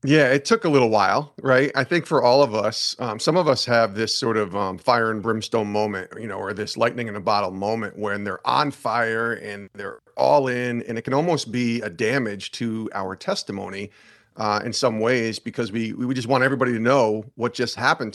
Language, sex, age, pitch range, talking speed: English, male, 40-59, 110-140 Hz, 225 wpm